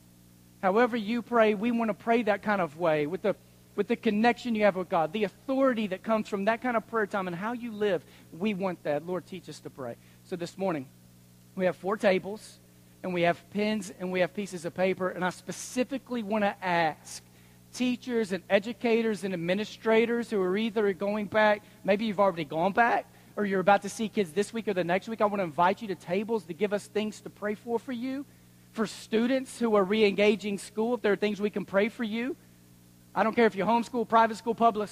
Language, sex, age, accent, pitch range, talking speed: English, male, 40-59, American, 175-220 Hz, 230 wpm